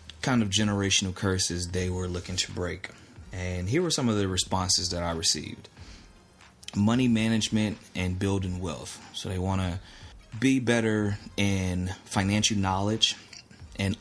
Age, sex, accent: 20-39, male, American